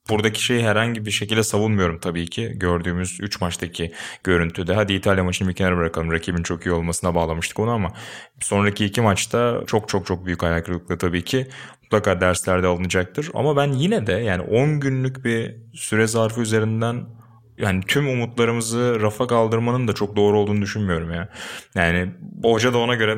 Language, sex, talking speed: Turkish, male, 170 wpm